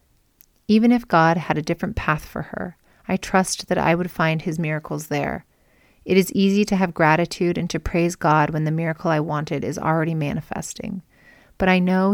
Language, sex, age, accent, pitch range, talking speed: English, female, 30-49, American, 160-185 Hz, 195 wpm